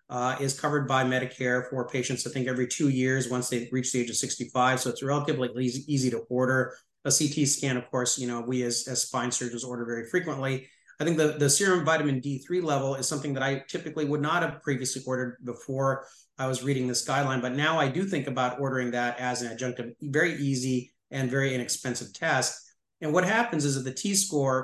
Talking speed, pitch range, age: 215 wpm, 125-150 Hz, 30-49